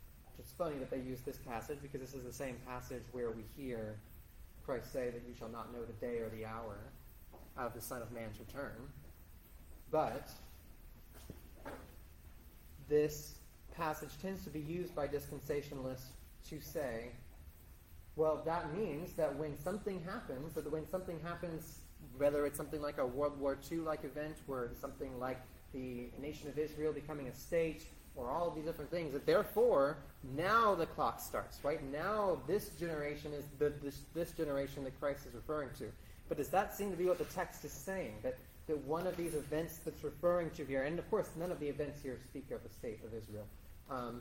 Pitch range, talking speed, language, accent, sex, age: 125-160 Hz, 185 wpm, English, American, male, 30-49